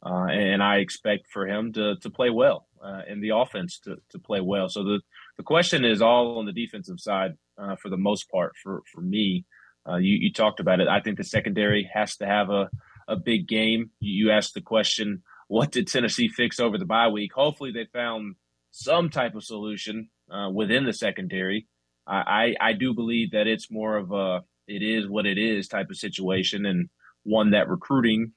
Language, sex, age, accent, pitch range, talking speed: English, male, 20-39, American, 100-120 Hz, 205 wpm